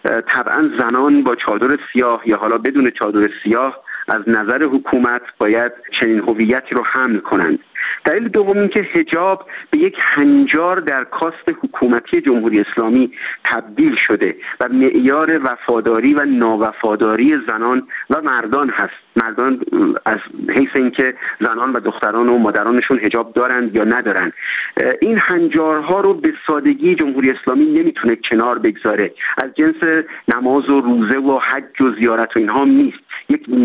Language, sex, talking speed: Persian, male, 140 wpm